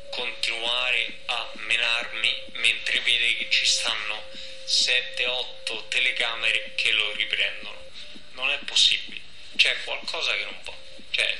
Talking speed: 115 wpm